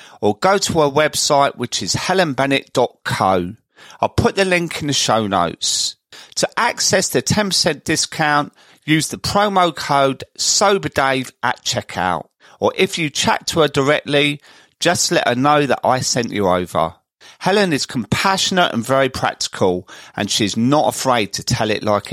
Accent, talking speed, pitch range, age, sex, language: British, 155 wpm, 120-160 Hz, 40-59, male, English